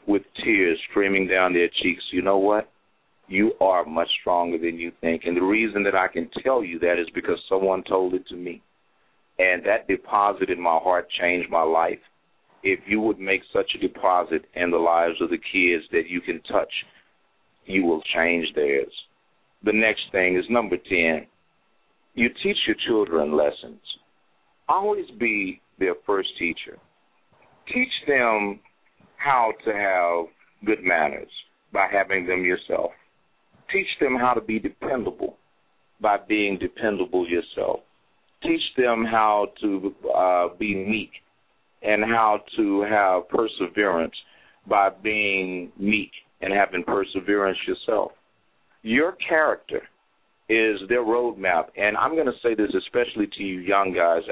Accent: American